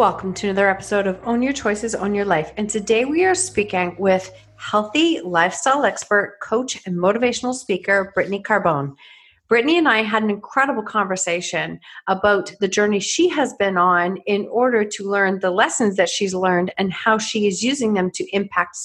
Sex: female